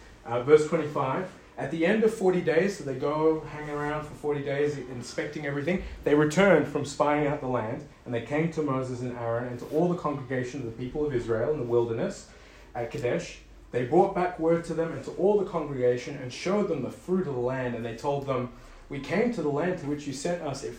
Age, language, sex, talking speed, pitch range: 30-49, English, male, 235 wpm, 115-150 Hz